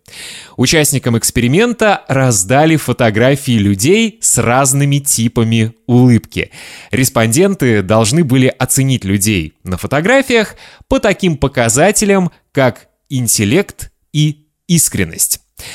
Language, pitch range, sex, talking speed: Russian, 115-165 Hz, male, 90 wpm